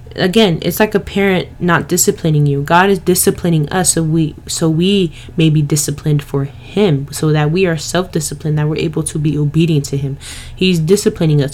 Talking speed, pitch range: 190 wpm, 145-170 Hz